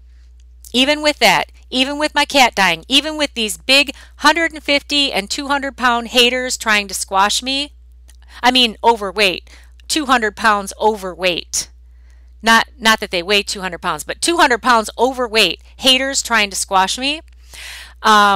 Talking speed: 140 wpm